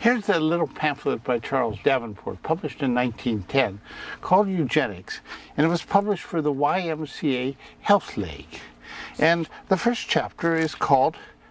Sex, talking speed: male, 140 wpm